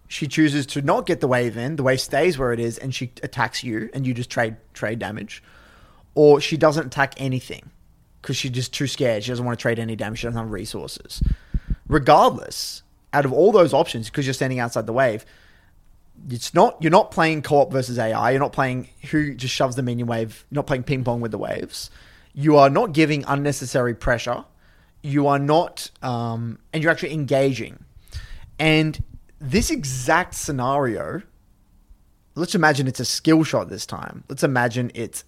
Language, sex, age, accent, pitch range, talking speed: English, male, 20-39, Australian, 115-150 Hz, 190 wpm